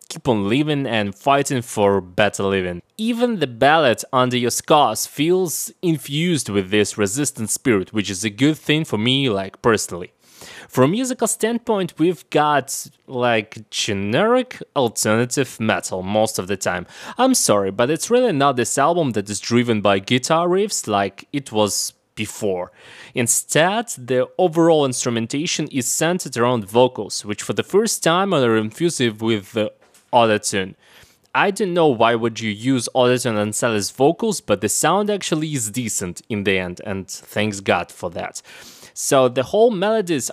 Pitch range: 105-155 Hz